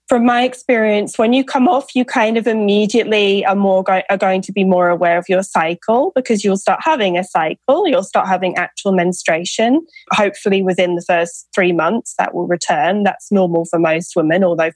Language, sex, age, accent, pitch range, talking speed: English, female, 20-39, British, 180-225 Hz, 200 wpm